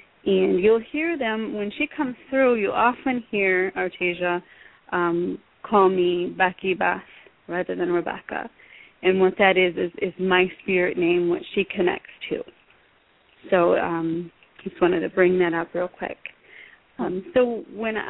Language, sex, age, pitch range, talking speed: English, female, 30-49, 180-220 Hz, 155 wpm